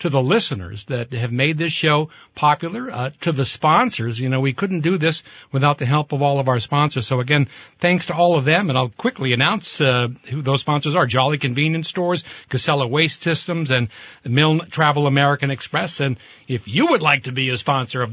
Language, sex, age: English, male, 60-79